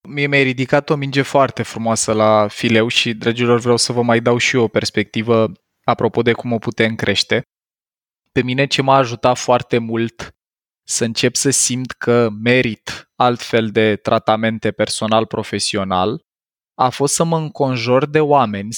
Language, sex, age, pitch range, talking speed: Romanian, male, 20-39, 110-140 Hz, 160 wpm